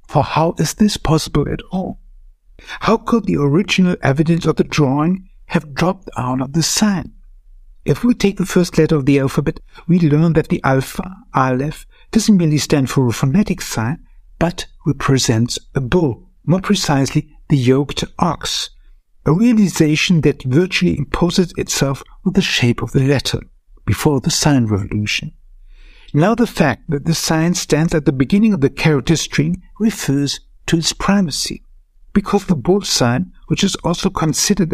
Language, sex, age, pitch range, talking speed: German, male, 60-79, 135-185 Hz, 160 wpm